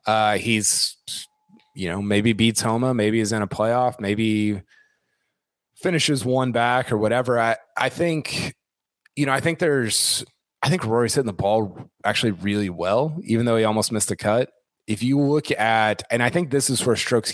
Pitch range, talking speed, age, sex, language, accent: 100-125 Hz, 185 wpm, 30-49, male, English, American